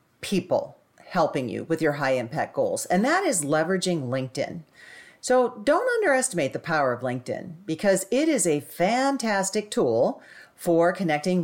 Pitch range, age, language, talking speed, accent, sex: 145-215 Hz, 40-59, English, 140 wpm, American, female